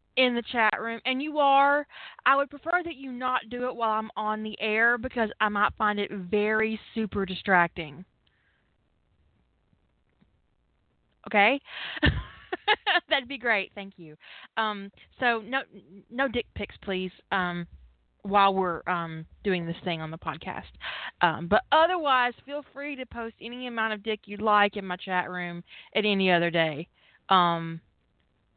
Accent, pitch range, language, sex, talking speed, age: American, 185-255 Hz, English, female, 155 wpm, 20-39